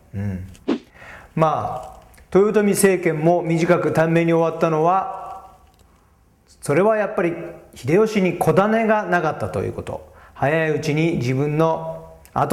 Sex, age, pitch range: male, 40-59, 115-185 Hz